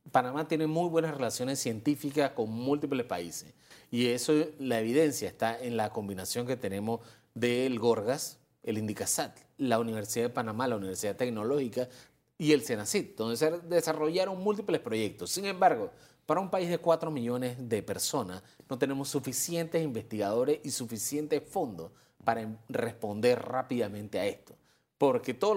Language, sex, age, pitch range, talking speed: Spanish, male, 30-49, 115-150 Hz, 145 wpm